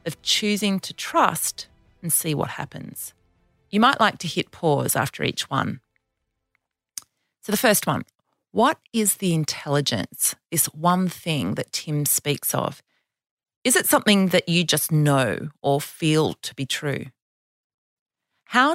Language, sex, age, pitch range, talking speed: English, female, 30-49, 140-200 Hz, 145 wpm